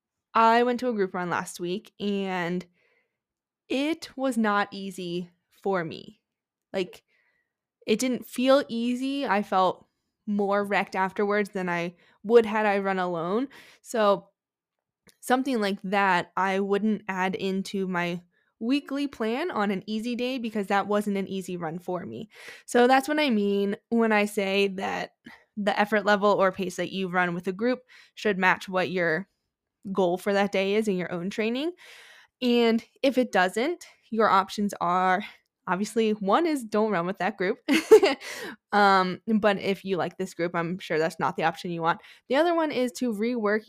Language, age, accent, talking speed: English, 20-39, American, 170 wpm